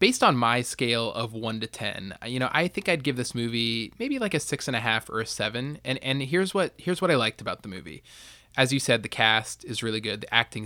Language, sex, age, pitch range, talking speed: English, male, 20-39, 115-135 Hz, 250 wpm